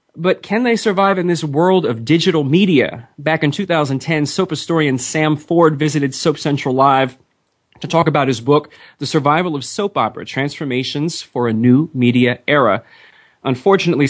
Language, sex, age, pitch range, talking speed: English, male, 30-49, 135-170 Hz, 160 wpm